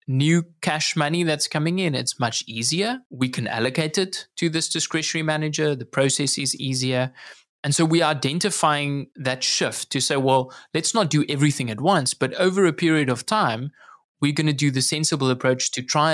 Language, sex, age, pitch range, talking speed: English, male, 20-39, 130-160 Hz, 195 wpm